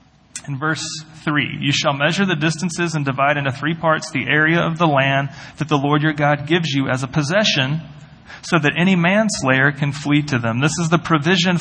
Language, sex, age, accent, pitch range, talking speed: English, male, 40-59, American, 130-160 Hz, 205 wpm